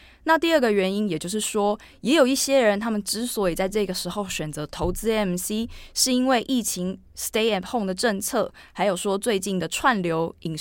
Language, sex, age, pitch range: Chinese, female, 20-39, 180-220 Hz